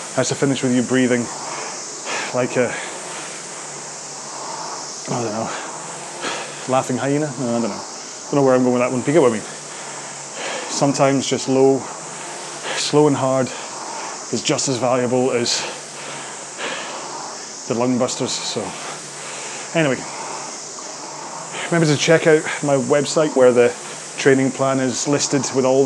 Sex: male